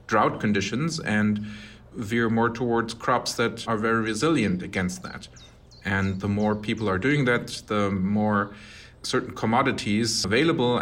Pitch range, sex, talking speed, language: 100-120 Hz, male, 140 wpm, English